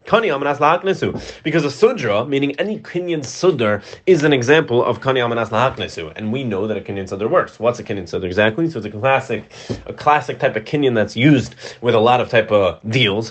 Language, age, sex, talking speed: English, 30-49, male, 190 wpm